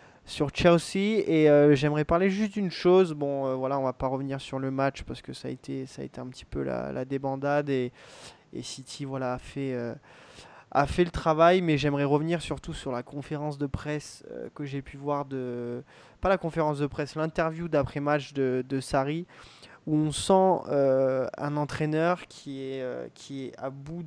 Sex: male